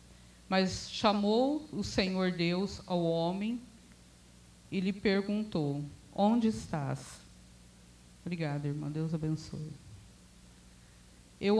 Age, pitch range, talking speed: 50-69, 155-225 Hz, 90 wpm